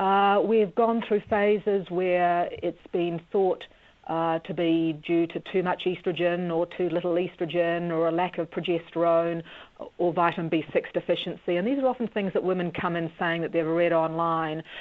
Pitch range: 165-190 Hz